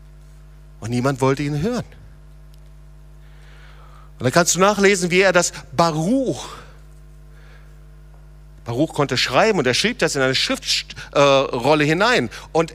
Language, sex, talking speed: German, male, 125 wpm